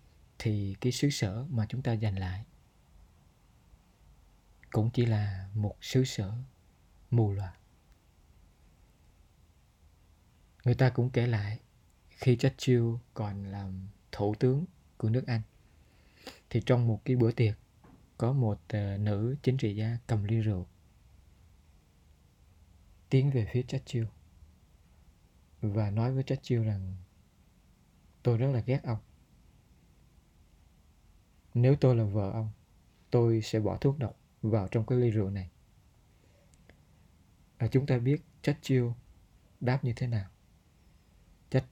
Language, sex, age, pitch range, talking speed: Vietnamese, male, 20-39, 85-120 Hz, 125 wpm